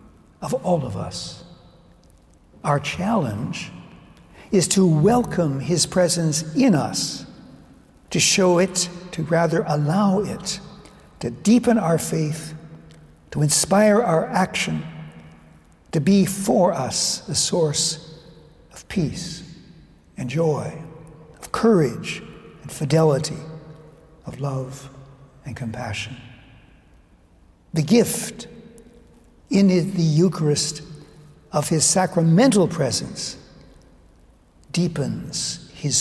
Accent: American